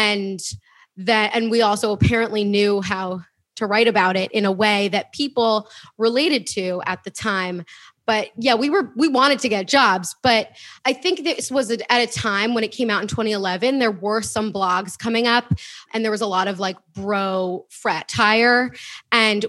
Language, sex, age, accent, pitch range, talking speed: English, female, 20-39, American, 205-245 Hz, 190 wpm